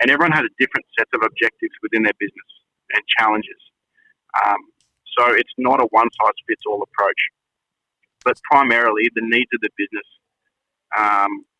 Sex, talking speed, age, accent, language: male, 145 wpm, 30-49, Australian, English